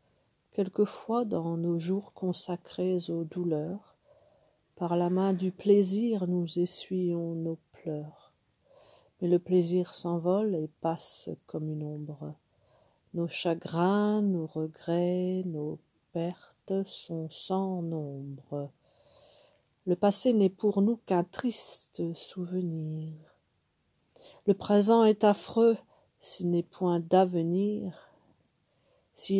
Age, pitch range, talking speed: 50-69, 170-195 Hz, 105 wpm